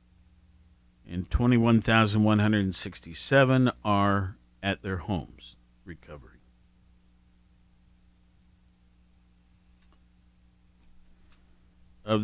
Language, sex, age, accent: English, male, 50-69, American